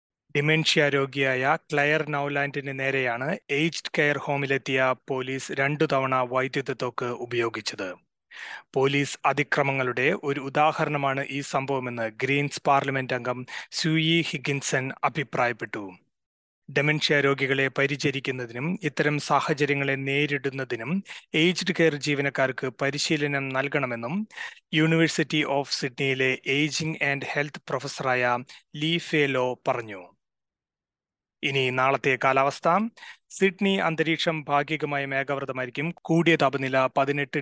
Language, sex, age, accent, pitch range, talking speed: Malayalam, male, 30-49, native, 130-150 Hz, 95 wpm